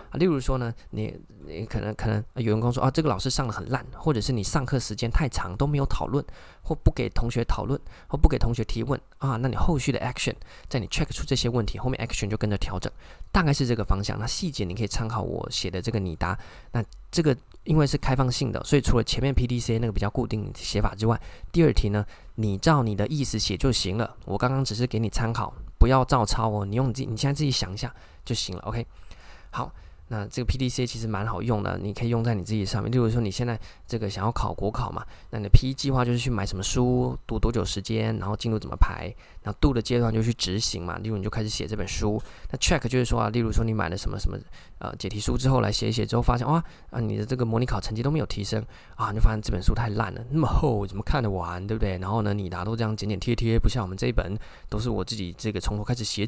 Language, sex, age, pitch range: Chinese, male, 20-39, 105-125 Hz